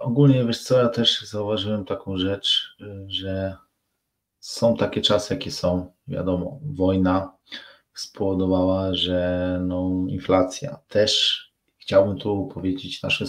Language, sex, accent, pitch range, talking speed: Polish, male, native, 95-105 Hz, 115 wpm